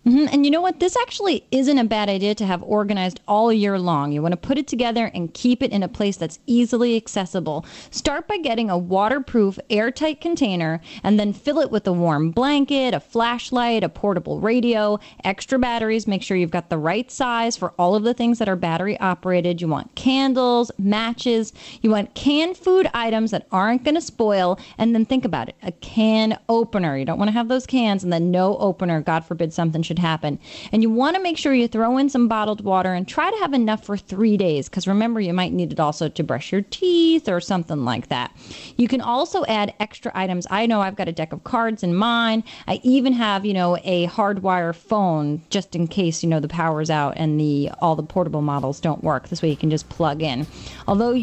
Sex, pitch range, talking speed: female, 175-245 Hz, 225 wpm